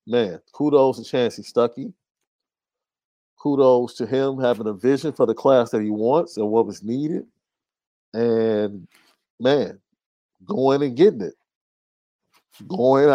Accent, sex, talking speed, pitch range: American, male, 130 wpm, 95-115 Hz